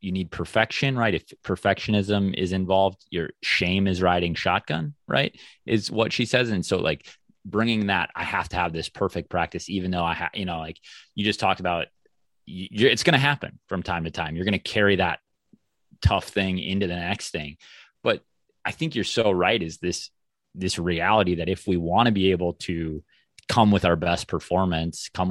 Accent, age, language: American, 30-49, English